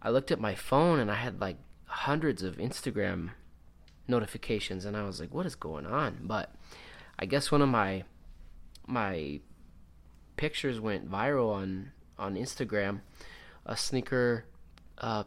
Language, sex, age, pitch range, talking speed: English, male, 20-39, 90-125 Hz, 145 wpm